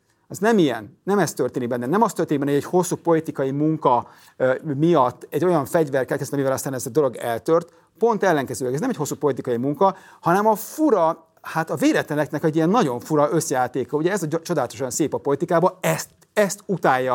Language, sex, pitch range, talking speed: Hungarian, male, 140-170 Hz, 205 wpm